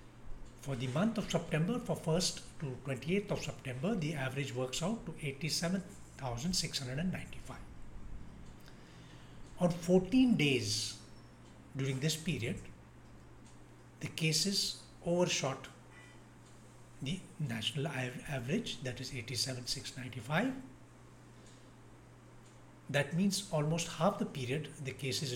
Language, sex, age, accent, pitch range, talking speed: English, male, 60-79, Indian, 125-165 Hz, 95 wpm